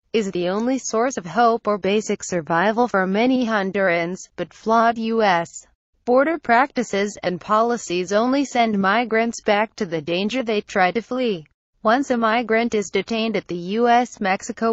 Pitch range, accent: 190-235 Hz, American